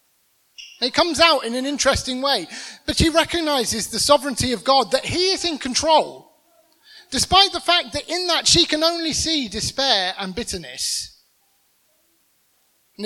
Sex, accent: male, British